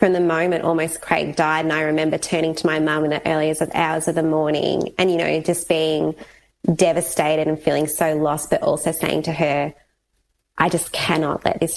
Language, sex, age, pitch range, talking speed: English, female, 20-39, 160-180 Hz, 210 wpm